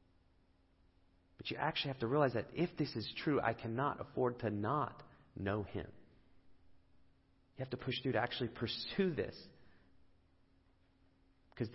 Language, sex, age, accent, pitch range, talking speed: English, male, 40-59, American, 90-120 Hz, 145 wpm